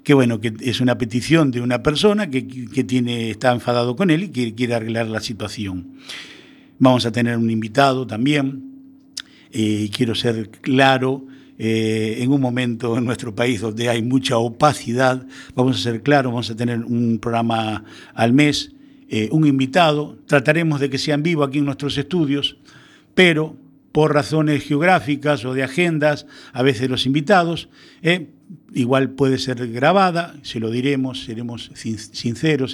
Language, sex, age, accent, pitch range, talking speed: Spanish, male, 50-69, Argentinian, 115-150 Hz, 160 wpm